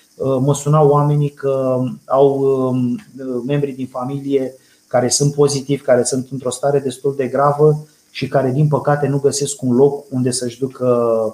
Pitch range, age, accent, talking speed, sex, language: 120-140 Hz, 20-39, native, 155 wpm, male, Romanian